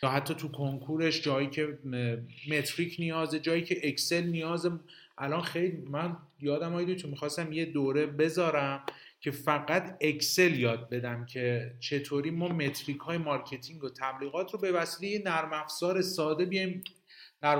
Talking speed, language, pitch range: 140 wpm, Persian, 140-175 Hz